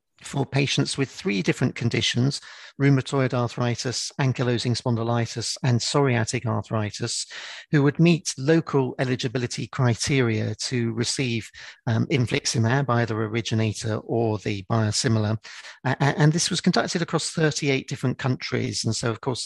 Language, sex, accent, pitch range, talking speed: English, male, British, 115-135 Hz, 125 wpm